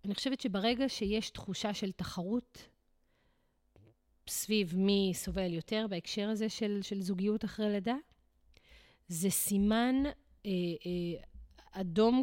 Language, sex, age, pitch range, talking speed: Hebrew, female, 30-49, 175-230 Hz, 115 wpm